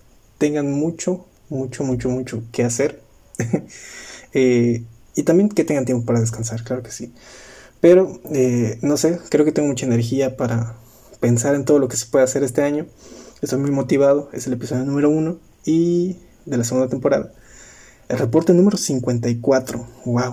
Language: Spanish